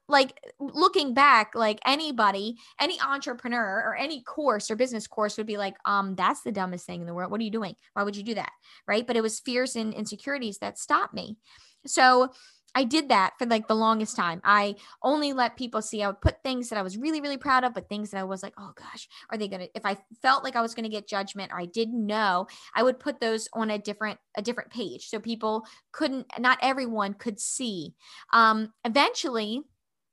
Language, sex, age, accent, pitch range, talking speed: English, female, 20-39, American, 210-250 Hz, 225 wpm